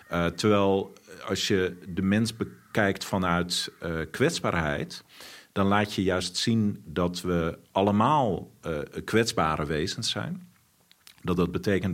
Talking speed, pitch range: 125 wpm, 85-100 Hz